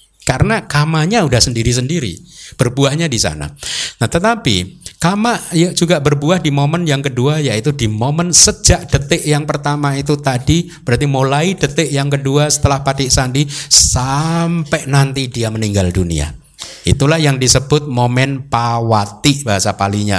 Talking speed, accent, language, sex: 135 wpm, native, Indonesian, male